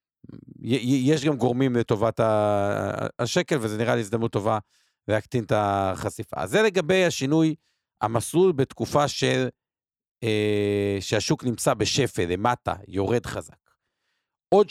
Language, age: Hebrew, 50-69